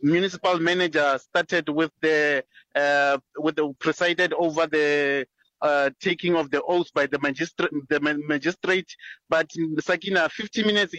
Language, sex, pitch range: English, male, 150-175 Hz